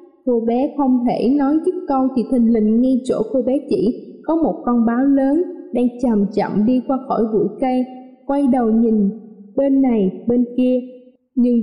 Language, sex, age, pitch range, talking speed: Vietnamese, female, 20-39, 230-285 Hz, 185 wpm